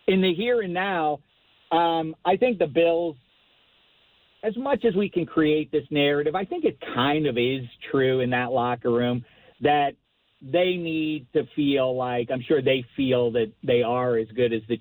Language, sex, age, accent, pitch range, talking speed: English, male, 50-69, American, 115-155 Hz, 185 wpm